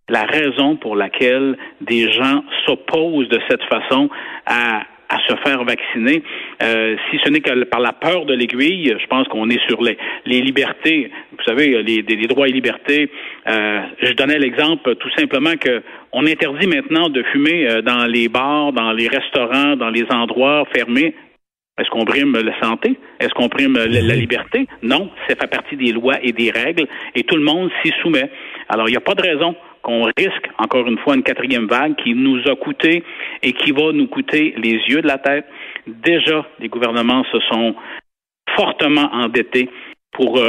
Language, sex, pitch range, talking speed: French, male, 120-155 Hz, 185 wpm